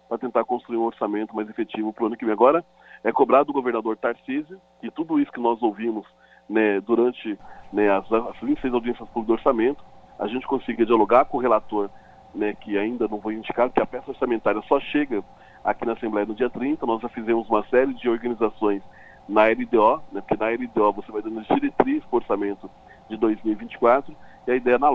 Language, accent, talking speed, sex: Portuguese, Brazilian, 205 wpm, male